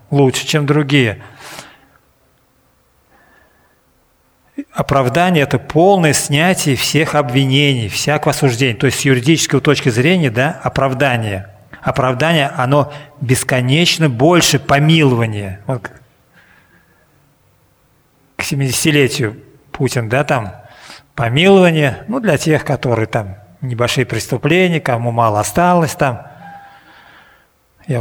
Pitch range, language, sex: 120-150 Hz, Russian, male